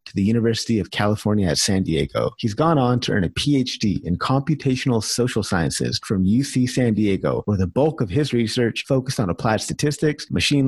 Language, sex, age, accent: English, male, 30-49, American